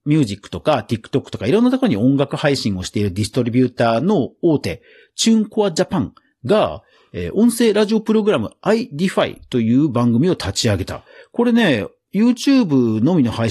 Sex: male